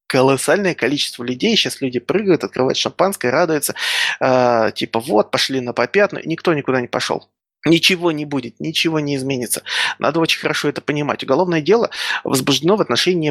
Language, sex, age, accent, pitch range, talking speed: Russian, male, 20-39, native, 120-155 Hz, 155 wpm